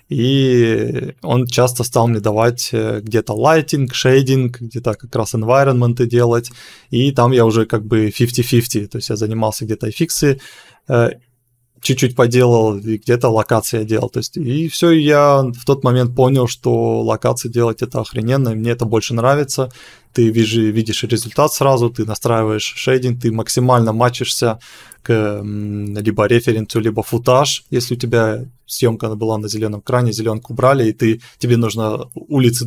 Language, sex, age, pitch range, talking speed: Russian, male, 20-39, 115-130 Hz, 155 wpm